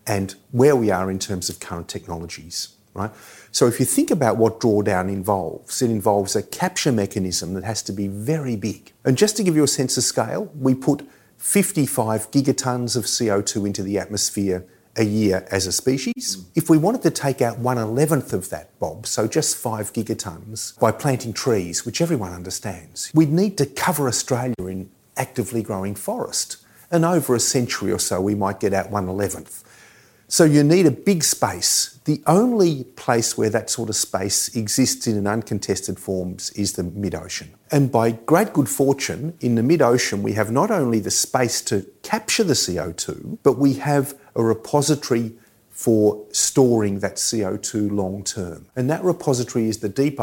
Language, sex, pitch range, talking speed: English, male, 100-140 Hz, 180 wpm